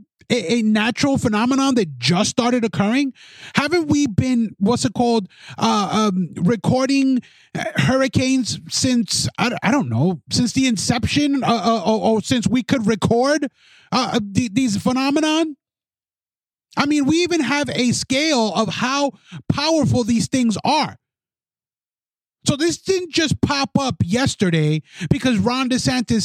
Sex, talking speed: male, 135 wpm